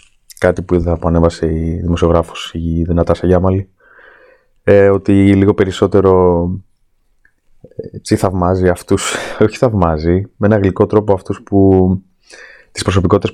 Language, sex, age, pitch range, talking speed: Greek, male, 20-39, 90-105 Hz, 115 wpm